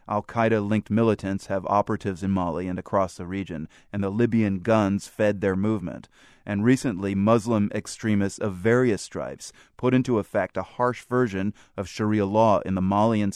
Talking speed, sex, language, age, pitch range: 160 wpm, male, English, 30-49, 95-110 Hz